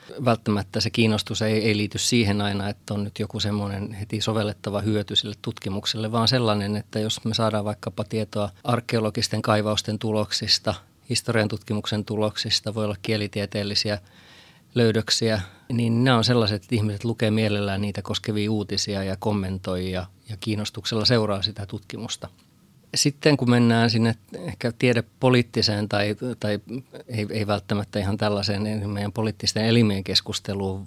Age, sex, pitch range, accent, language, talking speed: 30-49, male, 100-110 Hz, native, Finnish, 140 wpm